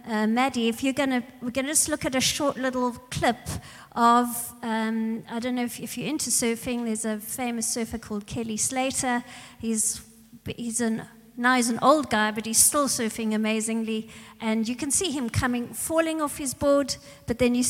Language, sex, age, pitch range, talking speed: English, female, 50-69, 220-255 Hz, 200 wpm